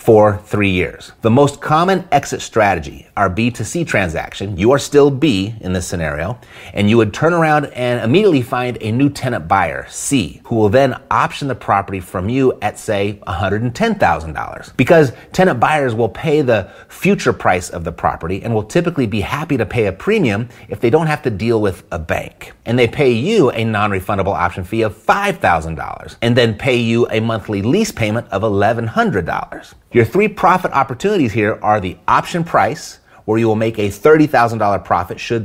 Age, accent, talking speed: 30-49, American, 185 wpm